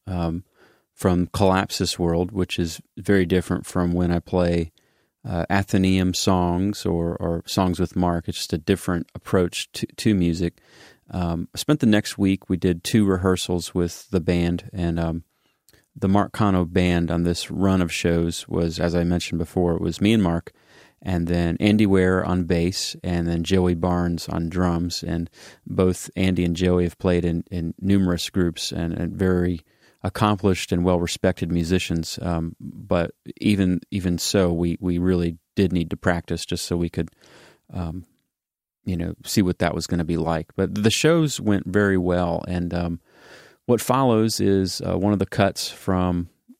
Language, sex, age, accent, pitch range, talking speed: English, male, 30-49, American, 85-95 Hz, 175 wpm